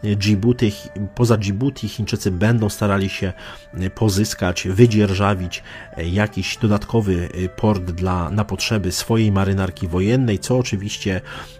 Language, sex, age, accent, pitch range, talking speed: Polish, male, 30-49, native, 95-110 Hz, 105 wpm